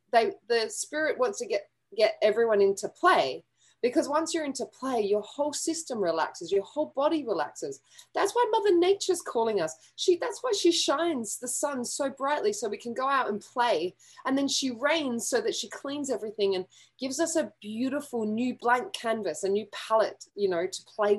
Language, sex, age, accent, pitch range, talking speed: English, female, 20-39, Australian, 205-300 Hz, 195 wpm